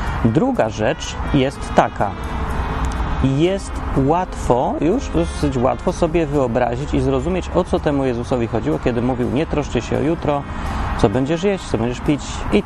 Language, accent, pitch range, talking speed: Polish, native, 110-140 Hz, 150 wpm